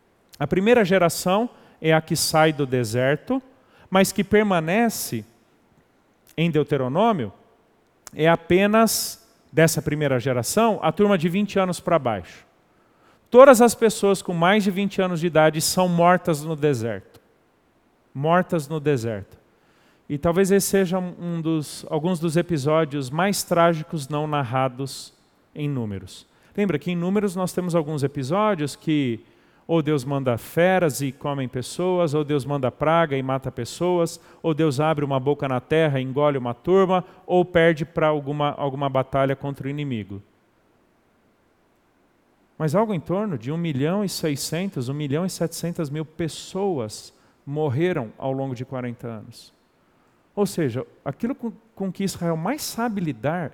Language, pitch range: Portuguese, 140-185 Hz